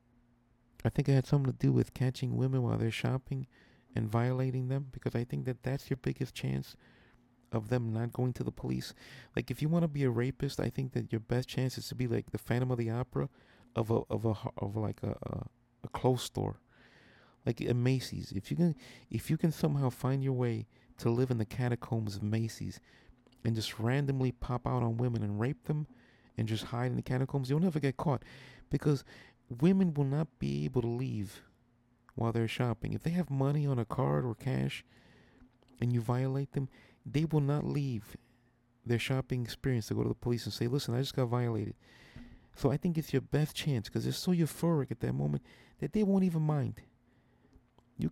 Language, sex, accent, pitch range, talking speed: English, male, American, 120-135 Hz, 210 wpm